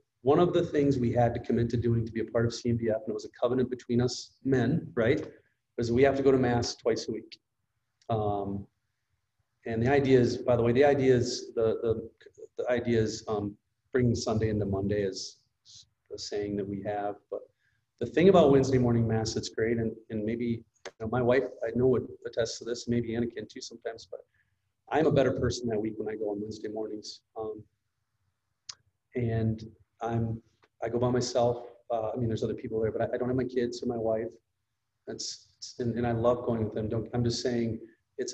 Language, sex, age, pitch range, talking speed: English, male, 40-59, 110-125 Hz, 220 wpm